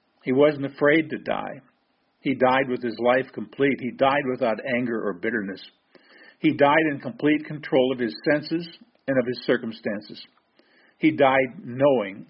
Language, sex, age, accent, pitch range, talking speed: English, male, 50-69, American, 115-140 Hz, 155 wpm